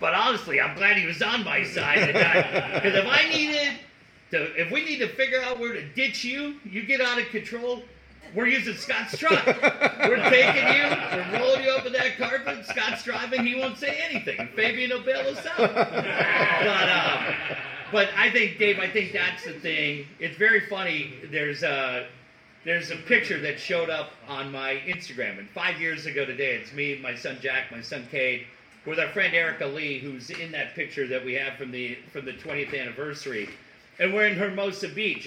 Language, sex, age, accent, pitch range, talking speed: English, male, 40-59, American, 135-210 Hz, 190 wpm